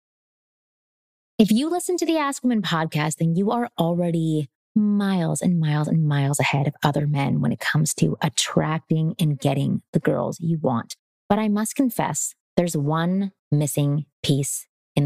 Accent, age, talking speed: American, 20-39, 165 wpm